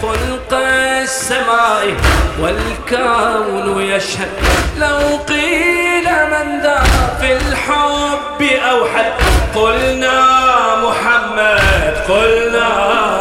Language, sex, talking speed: English, male, 70 wpm